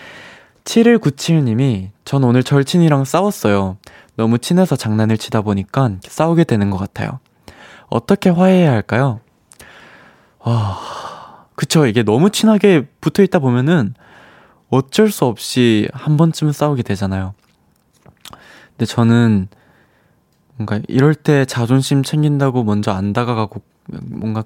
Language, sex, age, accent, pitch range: Korean, male, 20-39, native, 110-140 Hz